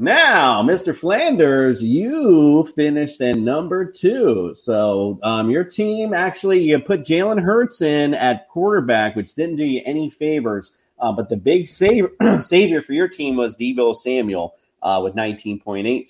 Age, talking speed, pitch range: 30-49, 150 wpm, 110-165 Hz